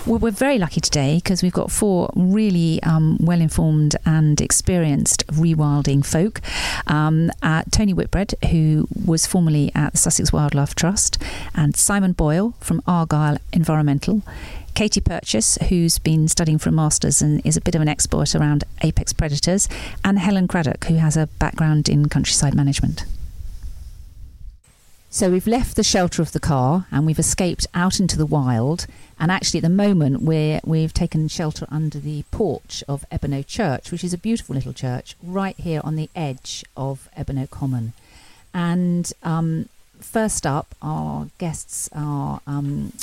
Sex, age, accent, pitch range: female, 40-59, British, 140-175 Hz